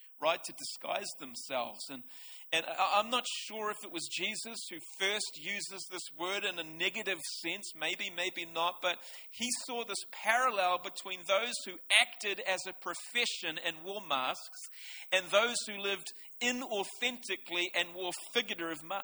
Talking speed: 150 wpm